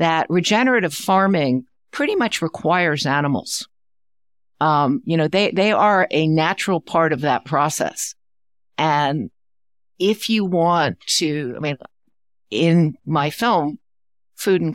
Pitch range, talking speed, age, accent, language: 130-175 Hz, 125 wpm, 60-79, American, English